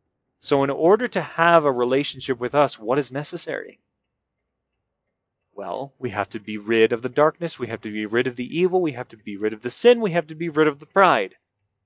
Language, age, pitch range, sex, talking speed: English, 30-49, 120-160 Hz, male, 230 wpm